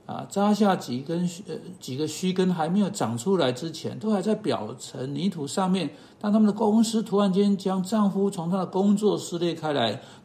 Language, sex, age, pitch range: Chinese, male, 60-79, 140-195 Hz